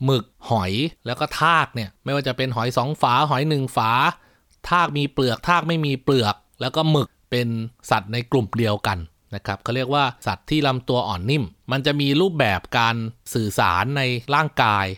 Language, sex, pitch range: Thai, male, 110-140 Hz